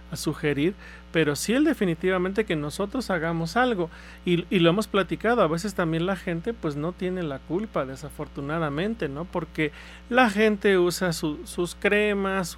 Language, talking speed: Spanish, 160 wpm